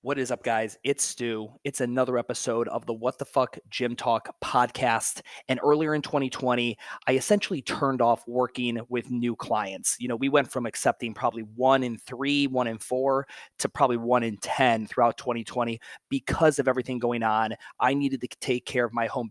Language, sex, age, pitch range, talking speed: English, male, 30-49, 120-140 Hz, 195 wpm